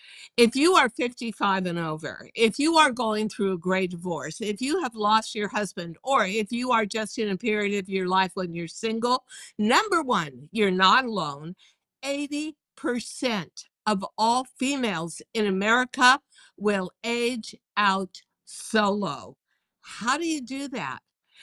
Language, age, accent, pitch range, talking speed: English, 60-79, American, 195-265 Hz, 150 wpm